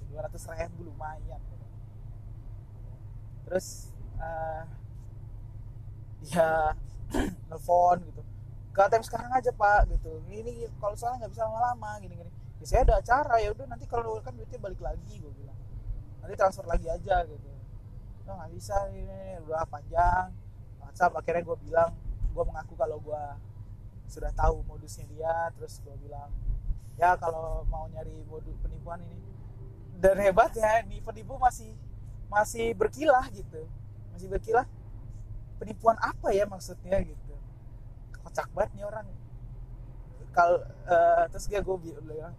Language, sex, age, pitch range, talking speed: Indonesian, male, 20-39, 110-160 Hz, 130 wpm